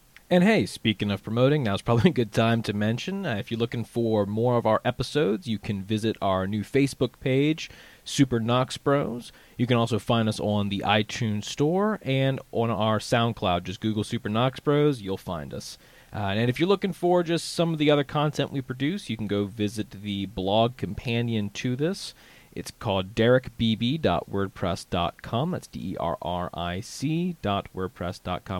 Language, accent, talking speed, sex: English, American, 170 wpm, male